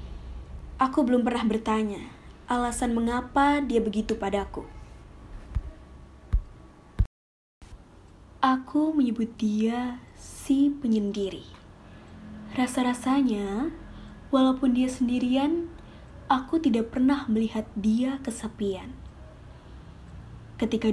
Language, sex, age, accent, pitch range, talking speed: Indonesian, female, 20-39, native, 200-250 Hz, 70 wpm